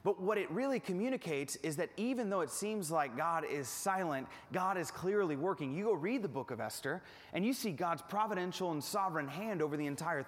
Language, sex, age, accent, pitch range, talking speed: English, male, 30-49, American, 155-200 Hz, 215 wpm